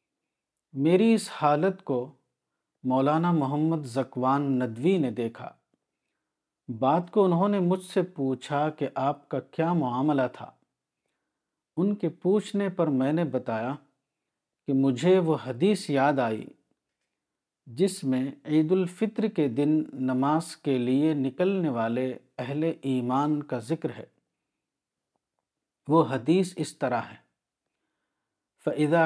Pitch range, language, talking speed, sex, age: 130-165 Hz, Urdu, 120 wpm, male, 50-69